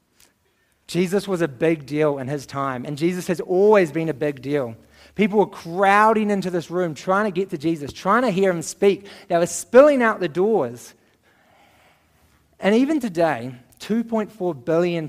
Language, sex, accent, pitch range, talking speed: English, male, Australian, 145-195 Hz, 170 wpm